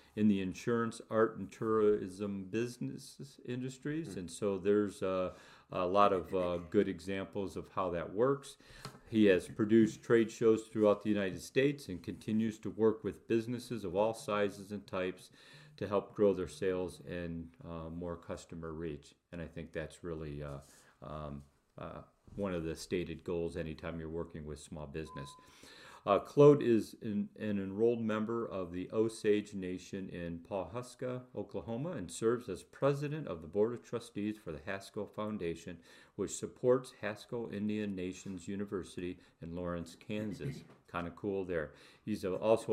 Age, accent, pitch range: 40-59, American, 90-115 Hz